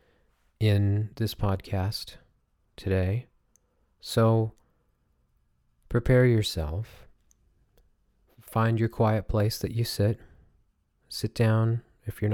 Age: 40-59